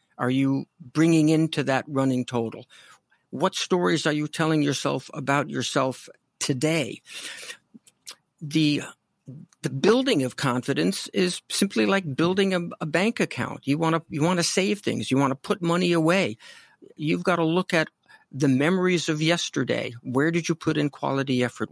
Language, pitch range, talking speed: English, 135-170 Hz, 155 wpm